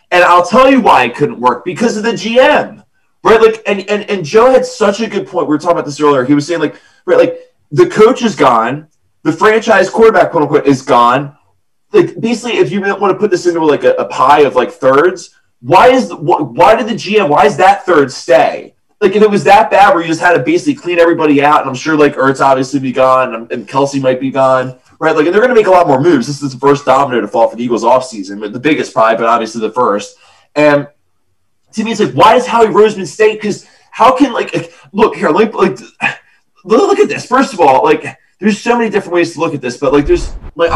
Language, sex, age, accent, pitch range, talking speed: English, male, 20-39, American, 145-220 Hz, 250 wpm